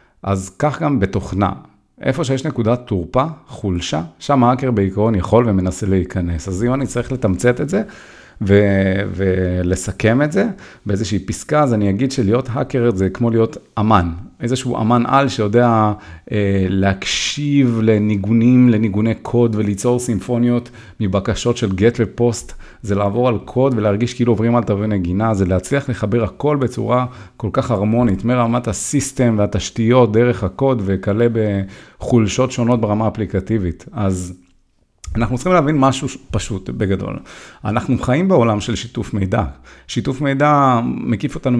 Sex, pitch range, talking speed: male, 95-125 Hz, 140 wpm